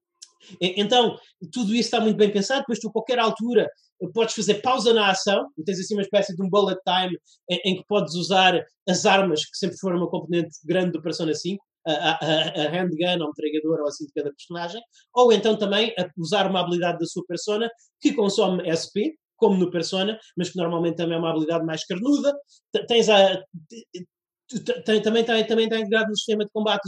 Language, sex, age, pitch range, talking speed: Portuguese, male, 20-39, 175-225 Hz, 185 wpm